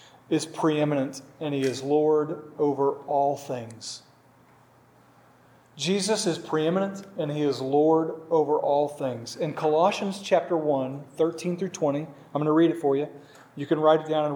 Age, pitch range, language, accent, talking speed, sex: 40-59, 145-195 Hz, English, American, 165 wpm, male